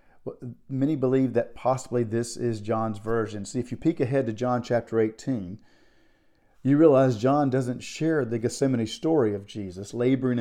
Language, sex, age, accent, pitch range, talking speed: English, male, 50-69, American, 115-135 Hz, 160 wpm